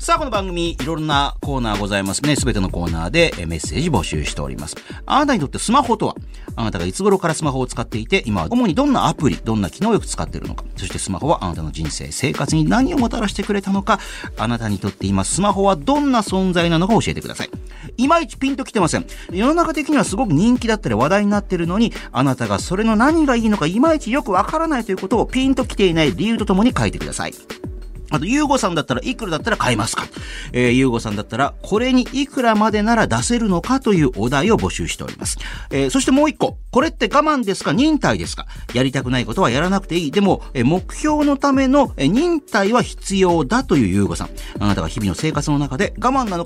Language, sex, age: Japanese, male, 40-59